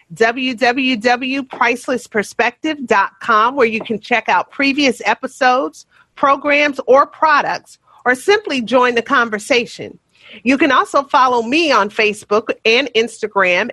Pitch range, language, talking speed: 225-290 Hz, English, 110 wpm